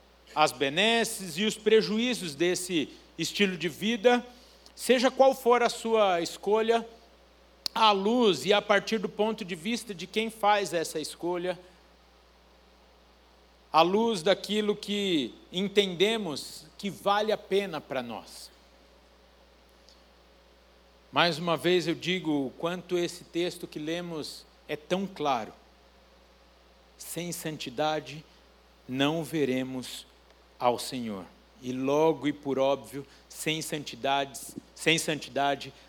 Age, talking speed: 60-79, 115 wpm